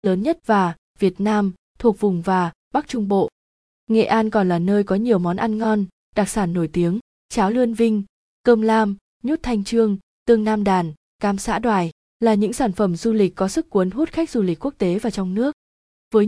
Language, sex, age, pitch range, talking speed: Vietnamese, female, 20-39, 190-230 Hz, 215 wpm